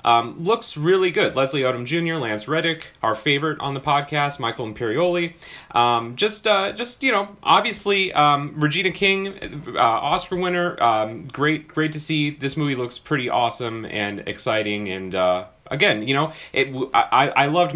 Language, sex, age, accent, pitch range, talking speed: English, male, 30-49, American, 120-165 Hz, 170 wpm